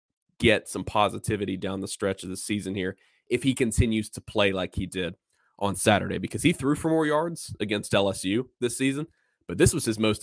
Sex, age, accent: male, 20-39, American